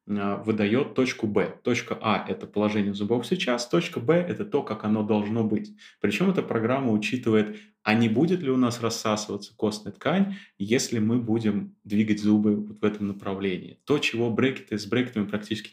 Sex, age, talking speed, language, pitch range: male, 30-49, 170 wpm, Russian, 100-125 Hz